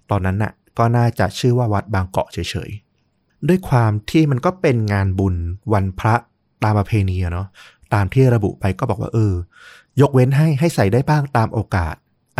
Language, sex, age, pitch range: Thai, male, 20-39, 100-125 Hz